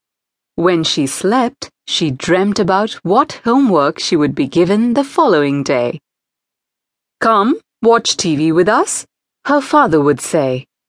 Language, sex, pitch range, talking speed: English, female, 160-260 Hz, 130 wpm